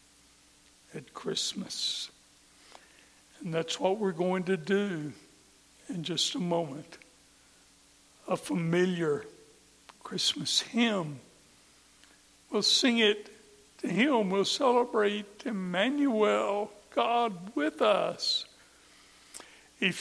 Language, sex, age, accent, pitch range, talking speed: English, male, 60-79, American, 165-220 Hz, 85 wpm